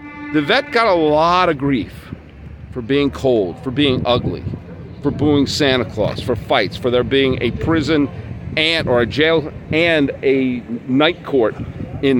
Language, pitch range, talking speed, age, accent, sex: English, 135-190 Hz, 155 wpm, 50-69, American, male